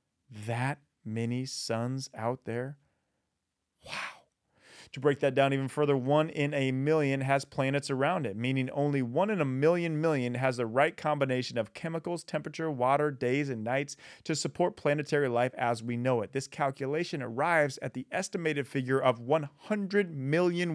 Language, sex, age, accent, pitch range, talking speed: English, male, 30-49, American, 125-160 Hz, 160 wpm